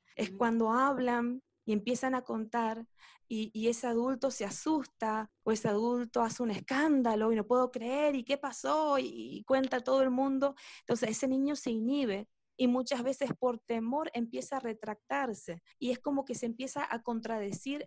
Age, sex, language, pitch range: 20-39, female, Spanish, 220-265 Hz